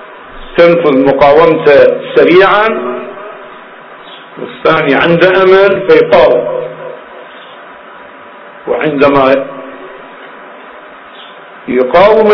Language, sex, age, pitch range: Arabic, male, 50-69, 140-210 Hz